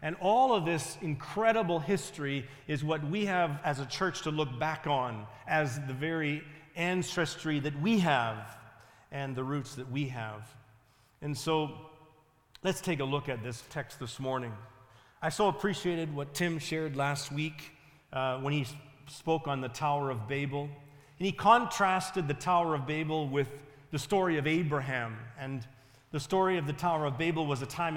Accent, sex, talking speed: American, male, 175 wpm